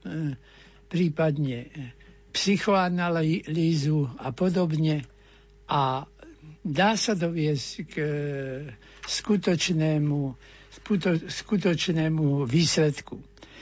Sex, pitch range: male, 155-190 Hz